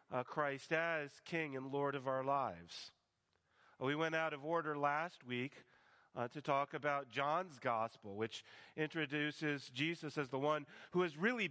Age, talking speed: 40-59, 160 wpm